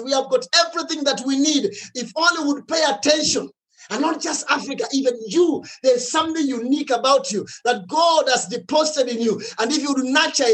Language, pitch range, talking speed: English, 270-320 Hz, 195 wpm